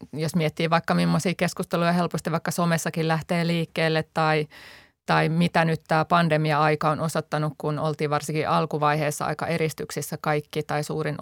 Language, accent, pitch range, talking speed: Finnish, native, 155-175 Hz, 145 wpm